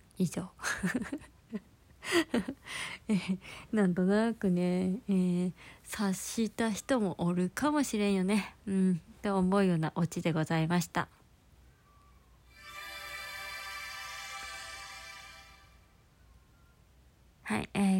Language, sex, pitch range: Japanese, female, 185-225 Hz